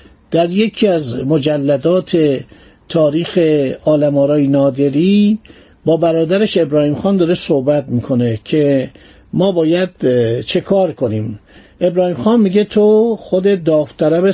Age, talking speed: 50-69, 110 wpm